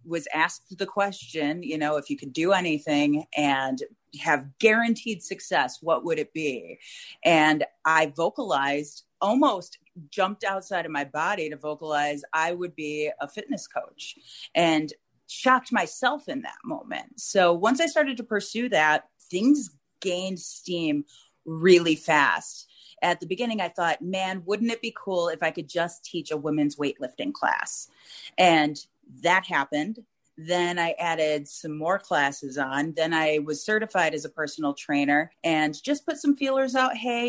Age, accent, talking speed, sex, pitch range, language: 30-49, American, 160 wpm, female, 150-190 Hz, English